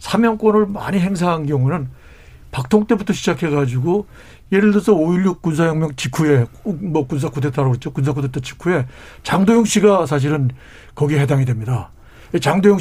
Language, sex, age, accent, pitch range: Korean, male, 60-79, native, 145-205 Hz